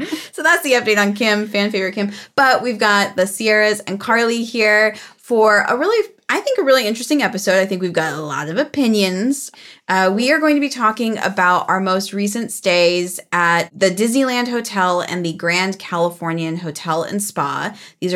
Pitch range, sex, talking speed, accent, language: 175-225 Hz, female, 190 wpm, American, English